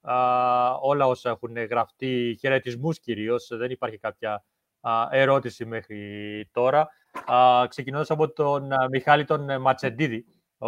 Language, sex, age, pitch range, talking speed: Greek, male, 30-49, 120-145 Hz, 130 wpm